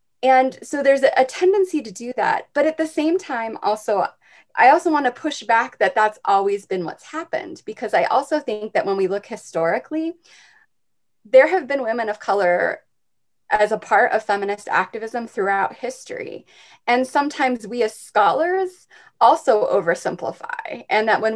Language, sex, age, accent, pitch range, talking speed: English, female, 20-39, American, 200-280 Hz, 165 wpm